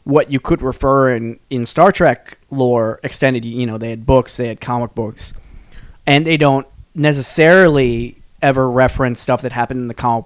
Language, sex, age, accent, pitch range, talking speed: English, male, 20-39, American, 120-140 Hz, 180 wpm